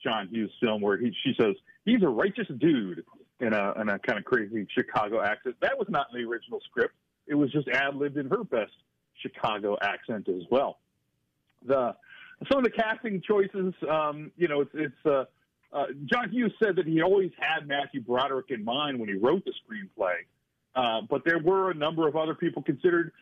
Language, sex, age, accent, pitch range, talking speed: English, male, 50-69, American, 135-190 Hz, 200 wpm